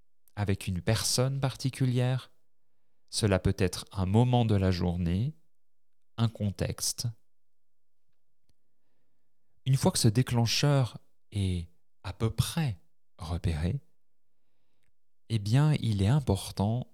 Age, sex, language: 40-59, male, French